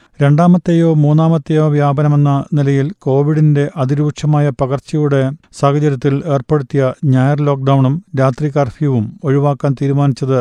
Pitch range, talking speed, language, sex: 135-150 Hz, 85 wpm, Malayalam, male